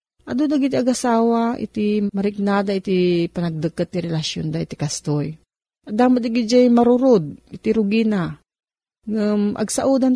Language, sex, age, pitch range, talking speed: Filipino, female, 40-59, 170-230 Hz, 120 wpm